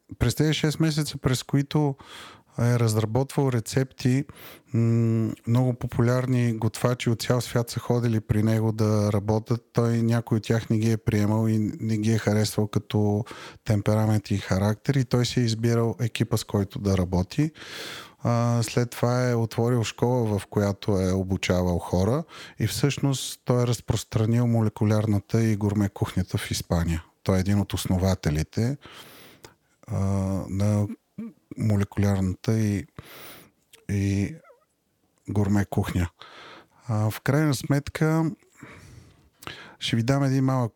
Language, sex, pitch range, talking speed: Bulgarian, male, 105-125 Hz, 130 wpm